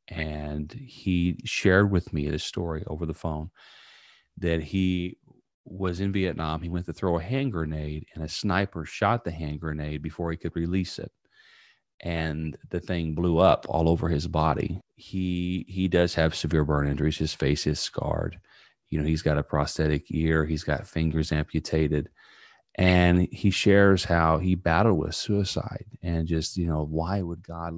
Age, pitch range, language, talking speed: 40-59, 80-95 Hz, English, 175 wpm